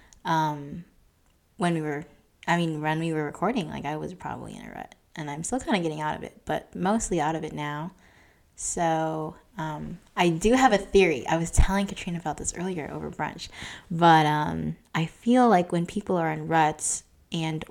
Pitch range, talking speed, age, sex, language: 150-175 Hz, 200 wpm, 20-39, female, English